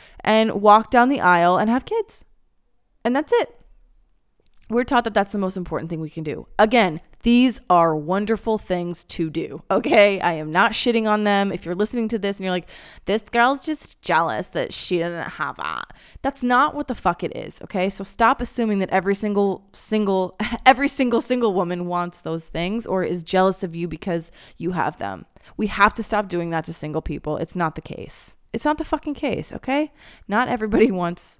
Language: English